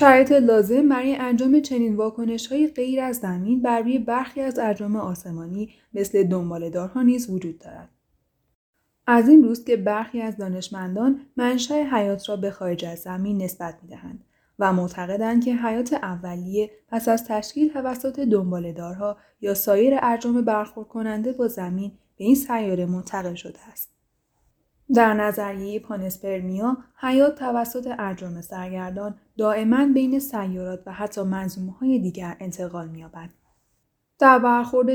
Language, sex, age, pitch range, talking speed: Persian, female, 10-29, 185-245 Hz, 135 wpm